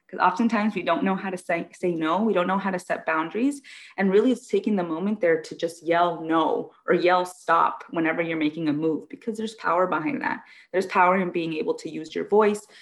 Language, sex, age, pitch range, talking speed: English, female, 20-39, 165-195 Hz, 235 wpm